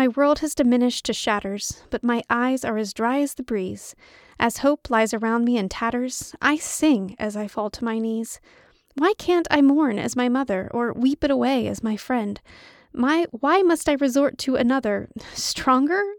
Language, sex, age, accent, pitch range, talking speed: English, female, 30-49, American, 235-300 Hz, 195 wpm